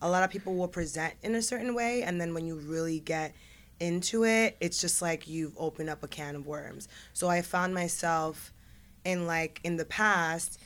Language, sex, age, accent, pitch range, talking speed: English, female, 20-39, American, 165-205 Hz, 210 wpm